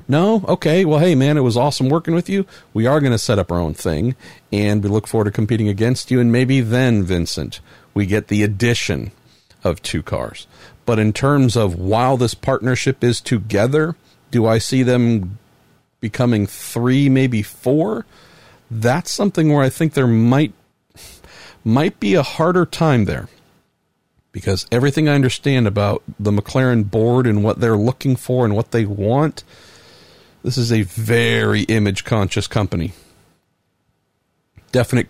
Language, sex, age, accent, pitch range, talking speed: English, male, 50-69, American, 105-130 Hz, 160 wpm